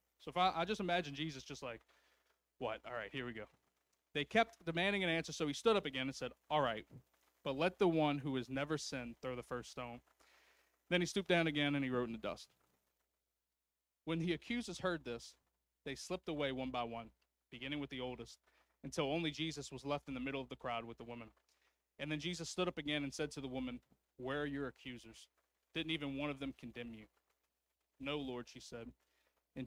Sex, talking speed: male, 215 wpm